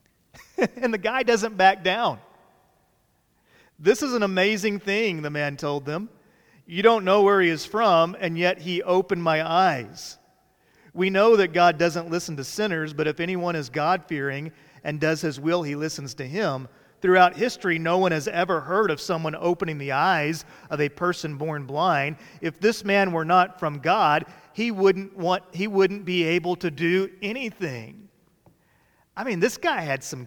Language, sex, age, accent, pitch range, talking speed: English, male, 40-59, American, 145-185 Hz, 175 wpm